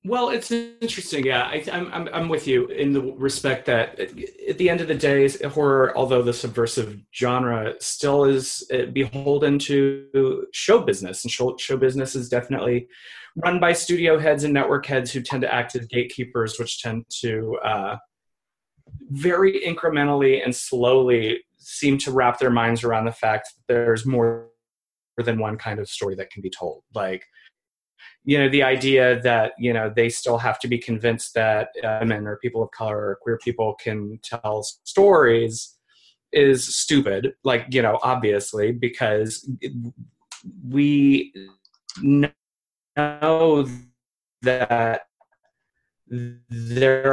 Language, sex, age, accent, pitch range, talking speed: English, male, 30-49, American, 115-140 Hz, 145 wpm